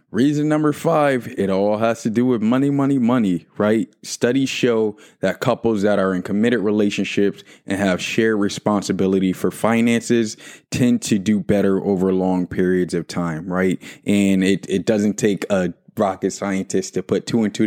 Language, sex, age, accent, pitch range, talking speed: English, male, 20-39, American, 95-105 Hz, 175 wpm